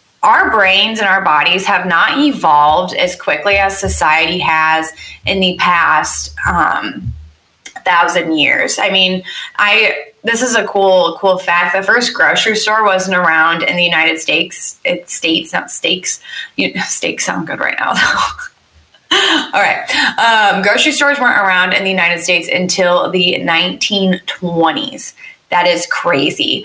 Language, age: English, 20-39